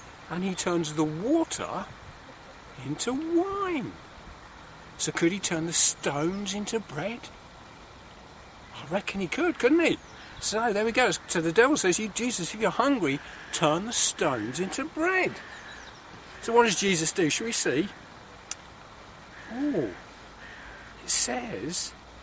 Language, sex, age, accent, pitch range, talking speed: English, male, 50-69, British, 175-255 Hz, 130 wpm